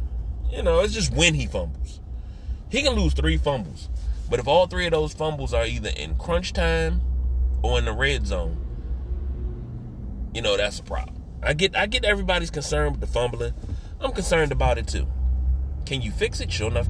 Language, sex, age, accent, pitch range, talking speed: English, male, 30-49, American, 65-95 Hz, 190 wpm